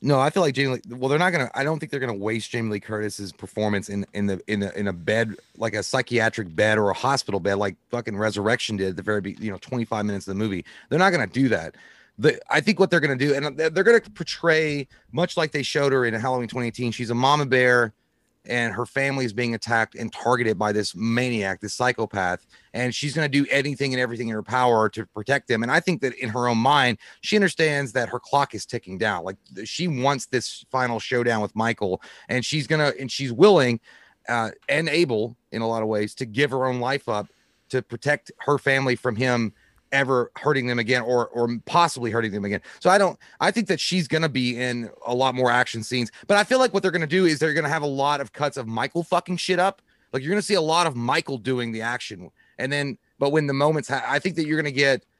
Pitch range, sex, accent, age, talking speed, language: 110-145 Hz, male, American, 30-49, 255 wpm, English